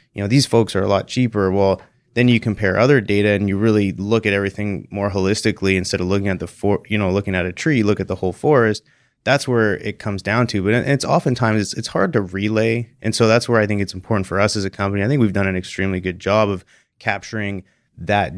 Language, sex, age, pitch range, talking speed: English, male, 30-49, 95-110 Hz, 250 wpm